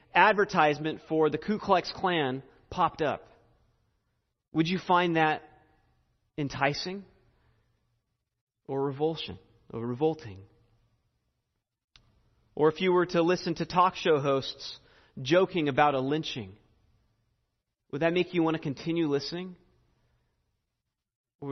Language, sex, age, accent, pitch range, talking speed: English, male, 30-49, American, 120-175 Hz, 110 wpm